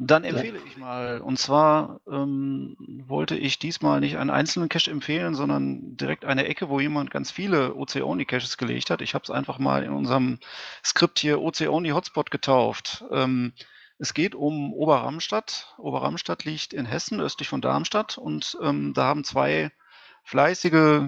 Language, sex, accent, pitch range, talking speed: German, male, German, 125-155 Hz, 160 wpm